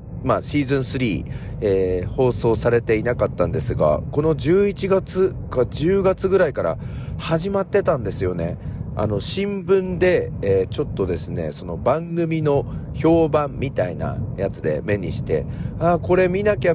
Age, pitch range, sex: 40-59, 110-160 Hz, male